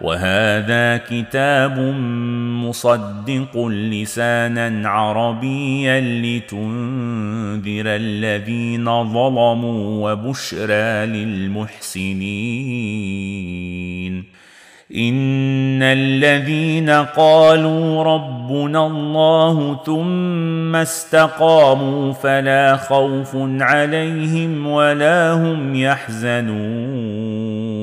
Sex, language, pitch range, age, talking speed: male, Arabic, 110-135 Hz, 40-59, 50 wpm